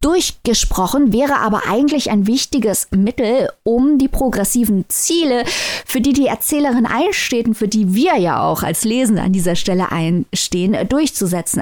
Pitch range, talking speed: 210-265 Hz, 150 wpm